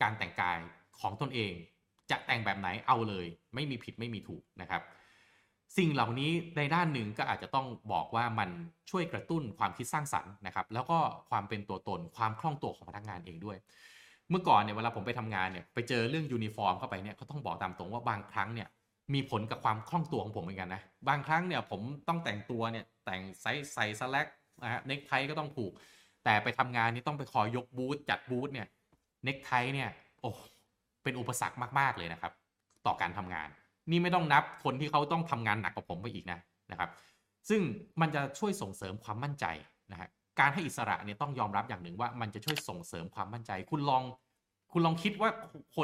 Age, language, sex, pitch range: 20-39, Thai, male, 105-150 Hz